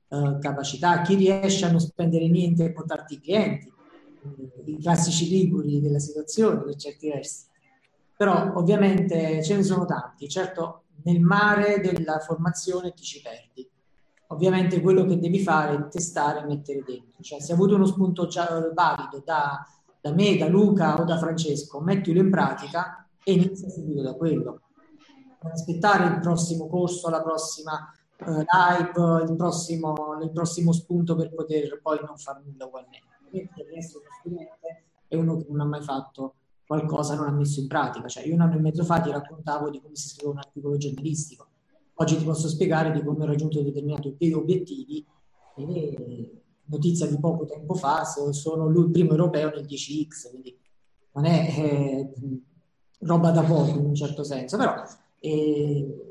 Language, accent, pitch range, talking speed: Italian, native, 145-175 Hz, 165 wpm